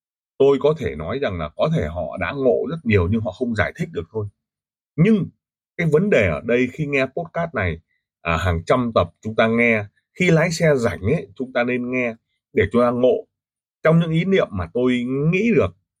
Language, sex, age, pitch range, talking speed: Vietnamese, male, 20-39, 100-165 Hz, 215 wpm